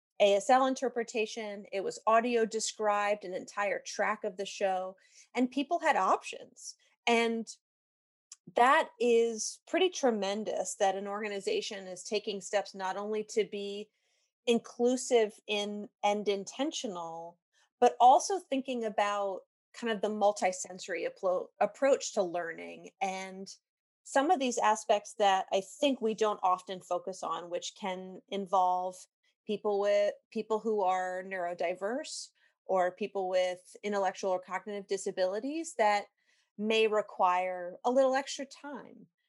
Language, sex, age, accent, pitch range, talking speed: English, female, 30-49, American, 195-245 Hz, 125 wpm